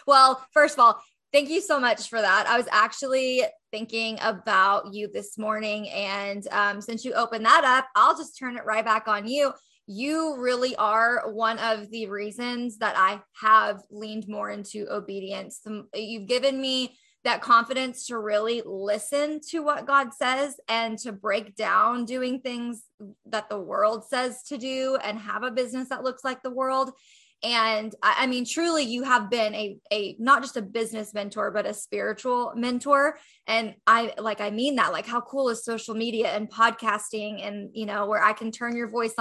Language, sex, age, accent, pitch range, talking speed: English, female, 20-39, American, 215-260 Hz, 185 wpm